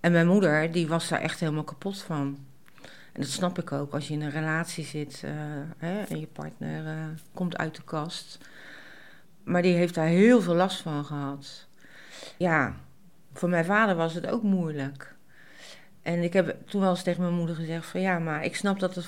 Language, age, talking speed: Dutch, 40-59, 205 wpm